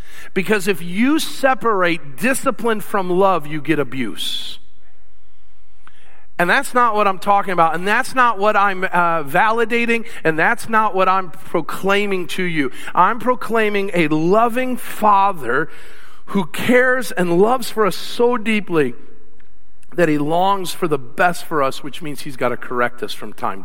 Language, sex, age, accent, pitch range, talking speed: English, male, 50-69, American, 160-220 Hz, 155 wpm